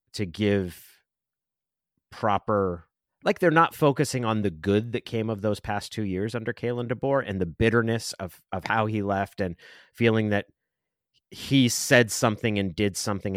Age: 30-49